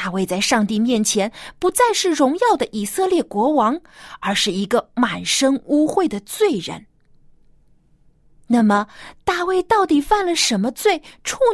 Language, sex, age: Chinese, female, 20-39